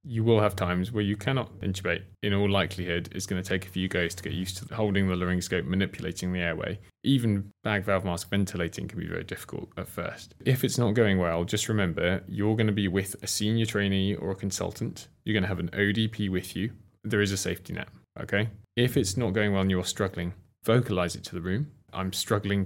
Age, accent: 20-39, British